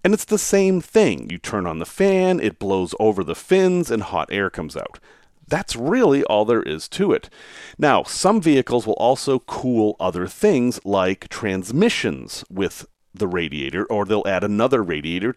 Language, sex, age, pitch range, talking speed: English, male, 40-59, 100-145 Hz, 175 wpm